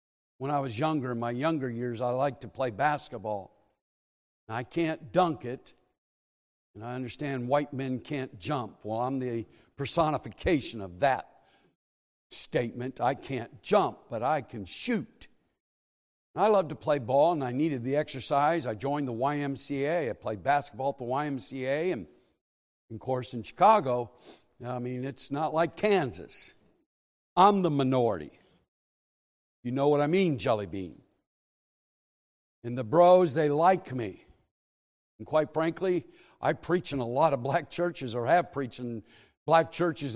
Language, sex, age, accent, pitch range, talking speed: English, male, 60-79, American, 120-155 Hz, 150 wpm